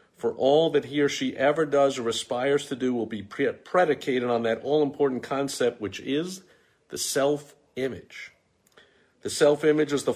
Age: 50-69